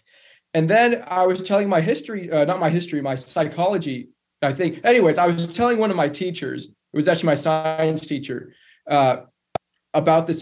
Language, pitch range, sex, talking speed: English, 145-180 Hz, male, 185 wpm